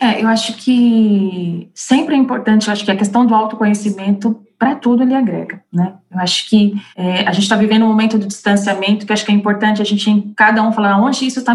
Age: 20-39